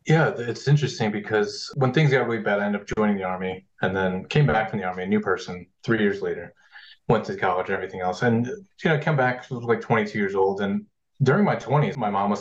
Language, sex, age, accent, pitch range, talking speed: English, male, 30-49, American, 100-145 Hz, 255 wpm